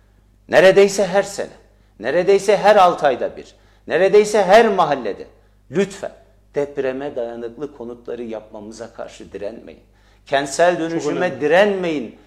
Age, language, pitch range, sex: 50-69, Turkish, 105-170 Hz, male